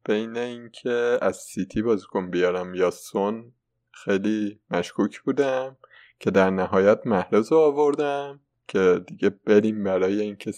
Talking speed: 125 wpm